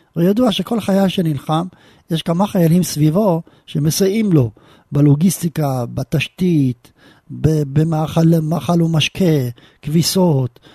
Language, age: Hebrew, 50-69